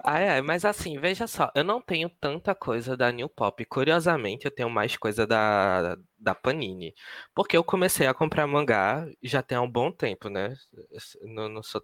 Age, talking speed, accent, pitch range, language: 20-39, 175 wpm, Brazilian, 110-150 Hz, Portuguese